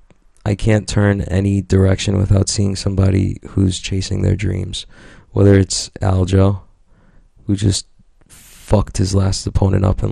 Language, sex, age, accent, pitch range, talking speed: English, male, 20-39, American, 95-105 Hz, 135 wpm